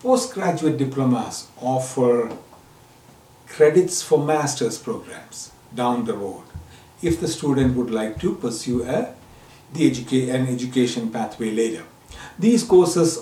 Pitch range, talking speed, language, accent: 120-155 Hz, 105 wpm, English, Indian